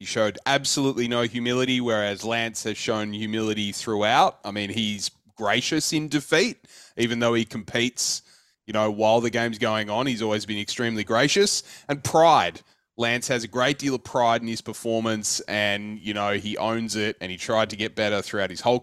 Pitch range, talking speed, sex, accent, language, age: 100-125 Hz, 190 wpm, male, Australian, English, 20-39